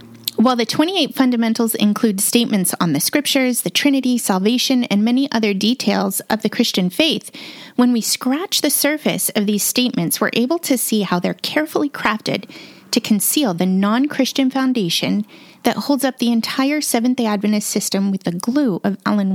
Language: English